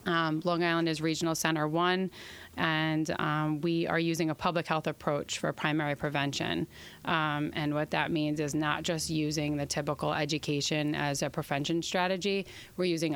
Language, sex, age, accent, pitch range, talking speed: English, female, 30-49, American, 155-170 Hz, 170 wpm